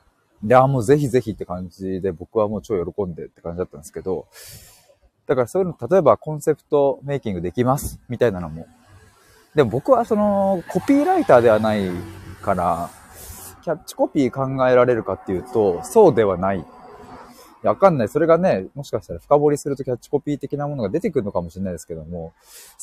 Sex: male